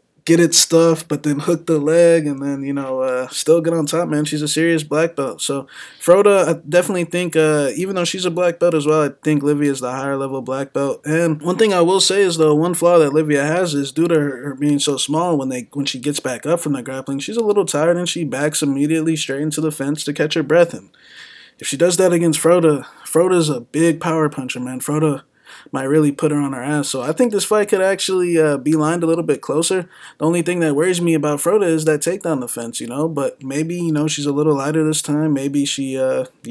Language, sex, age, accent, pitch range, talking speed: English, male, 20-39, American, 140-165 Hz, 255 wpm